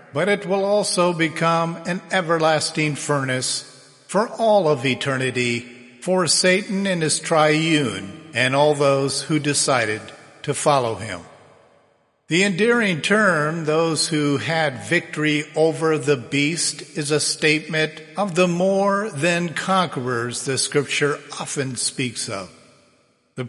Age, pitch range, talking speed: 50-69, 135-180 Hz, 125 wpm